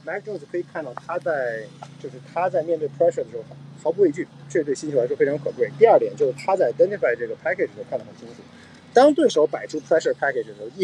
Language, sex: Chinese, male